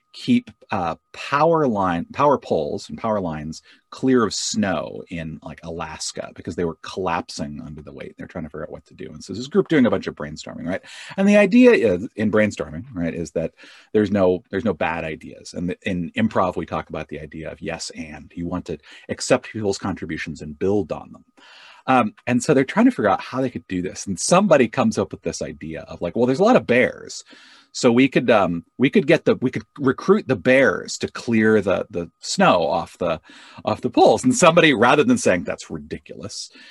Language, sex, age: English, male, 30-49